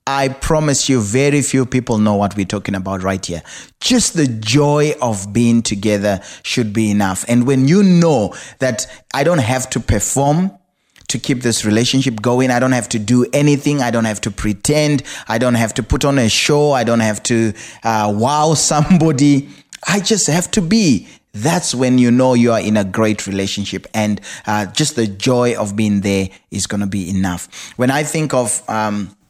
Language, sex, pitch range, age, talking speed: English, male, 110-150 Hz, 20-39, 195 wpm